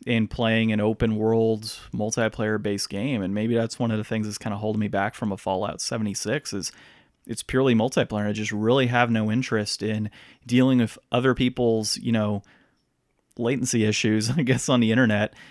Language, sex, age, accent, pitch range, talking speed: English, male, 30-49, American, 110-130 Hz, 190 wpm